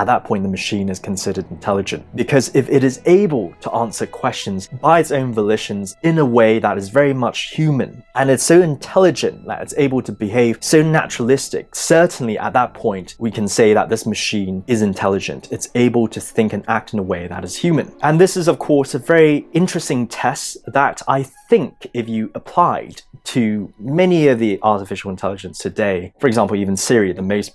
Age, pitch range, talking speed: 20-39, 100-150 Hz, 200 wpm